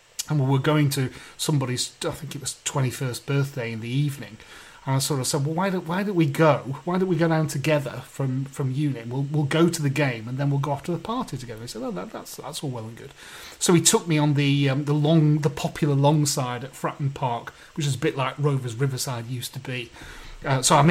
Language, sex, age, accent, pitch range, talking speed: English, male, 30-49, British, 135-180 Hz, 265 wpm